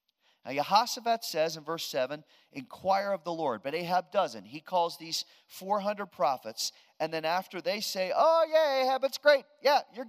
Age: 40-59